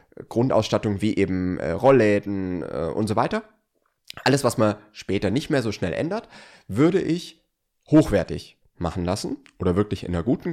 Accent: German